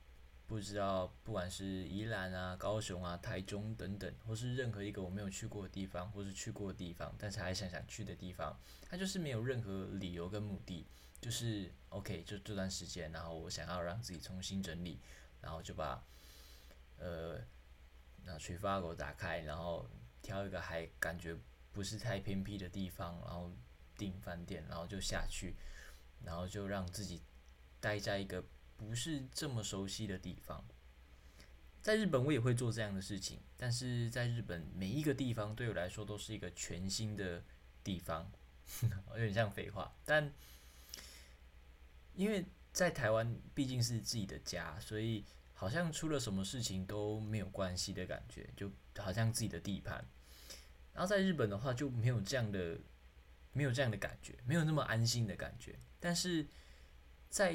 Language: Chinese